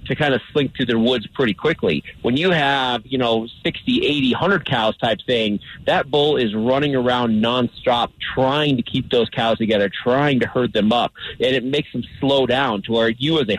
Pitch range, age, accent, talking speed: 120-150 Hz, 30-49, American, 210 wpm